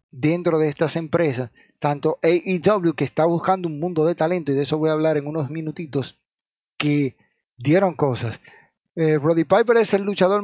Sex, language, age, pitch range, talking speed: male, Spanish, 30-49, 155-200 Hz, 180 wpm